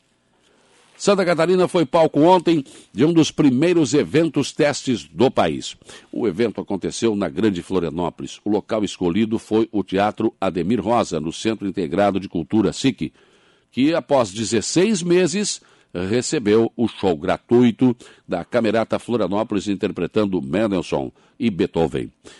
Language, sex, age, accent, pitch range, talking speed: Portuguese, male, 60-79, Brazilian, 105-150 Hz, 130 wpm